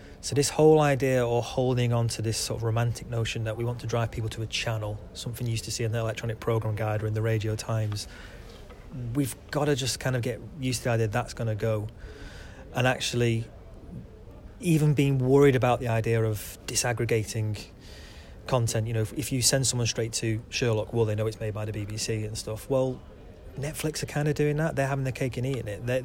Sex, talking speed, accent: male, 225 wpm, British